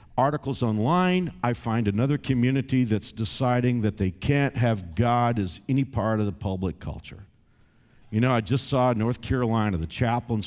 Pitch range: 110-165 Hz